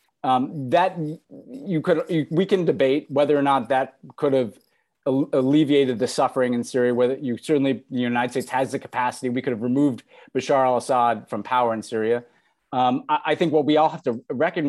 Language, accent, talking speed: English, American, 190 wpm